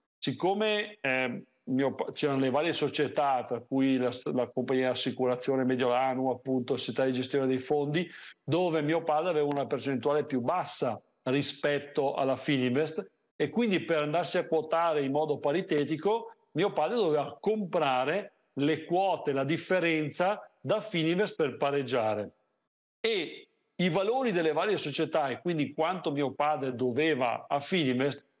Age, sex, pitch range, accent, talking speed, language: 50-69, male, 135-180 Hz, native, 140 wpm, Italian